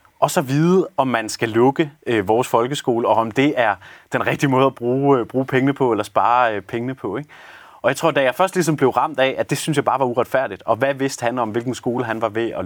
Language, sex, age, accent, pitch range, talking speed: Danish, male, 30-49, native, 110-145 Hz, 270 wpm